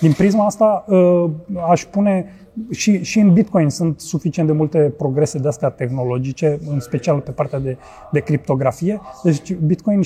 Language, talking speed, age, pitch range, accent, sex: Romanian, 150 wpm, 30-49, 150-180 Hz, native, male